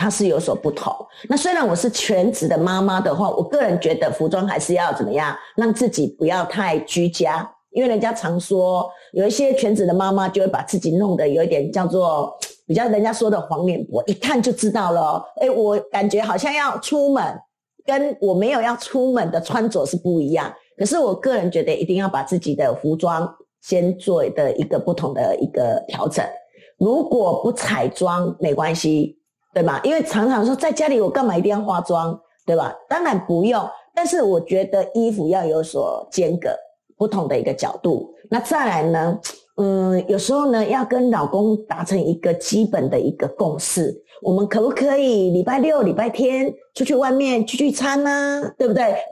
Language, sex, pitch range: Chinese, female, 180-255 Hz